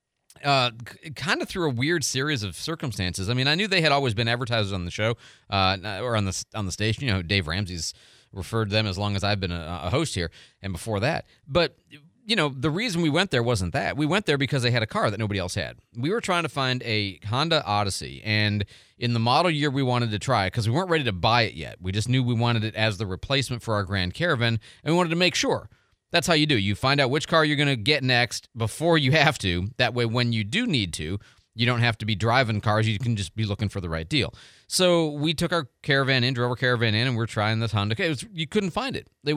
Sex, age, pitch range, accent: male, 30-49, 105-140 Hz, American